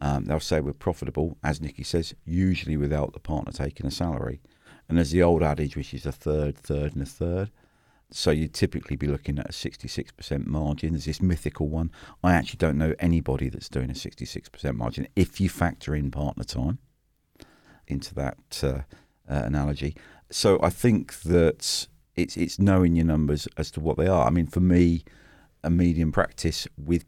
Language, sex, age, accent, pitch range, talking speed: English, male, 50-69, British, 75-90 Hz, 185 wpm